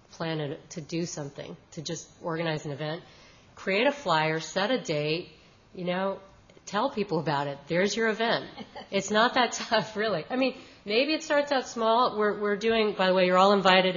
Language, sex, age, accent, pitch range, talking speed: English, female, 40-59, American, 160-195 Hz, 195 wpm